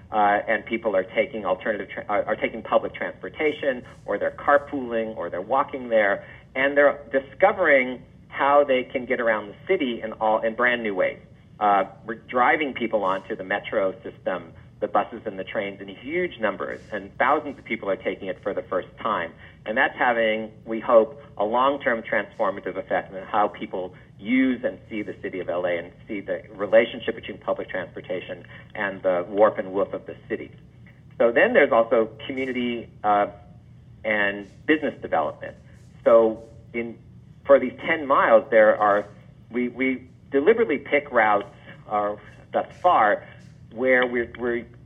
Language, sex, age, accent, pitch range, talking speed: English, male, 40-59, American, 115-145 Hz, 165 wpm